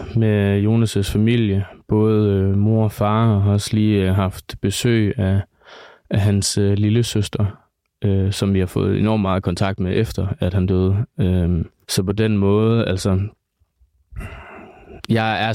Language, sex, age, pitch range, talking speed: Danish, male, 20-39, 95-110 Hz, 145 wpm